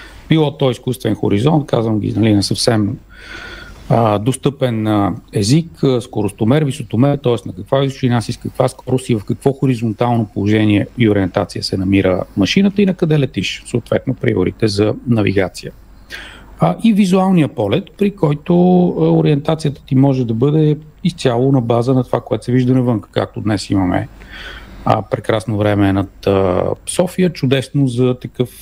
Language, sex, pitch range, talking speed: Bulgarian, male, 105-140 Hz, 155 wpm